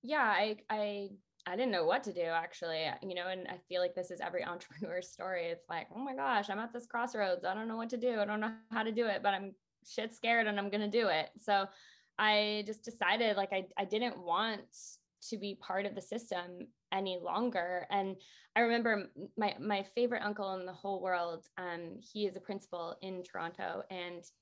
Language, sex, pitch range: English, female, 185-225 Hz